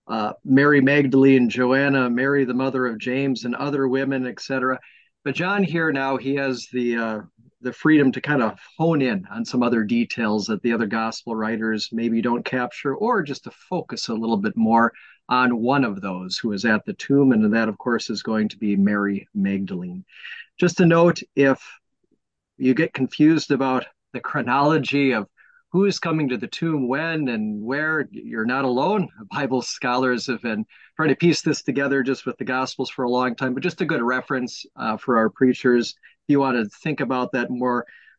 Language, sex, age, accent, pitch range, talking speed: English, male, 40-59, American, 115-140 Hz, 190 wpm